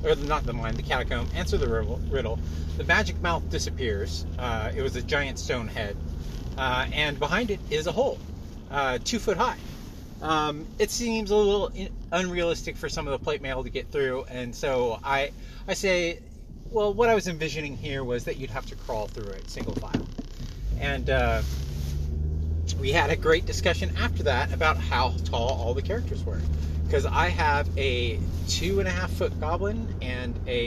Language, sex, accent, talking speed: English, male, American, 185 wpm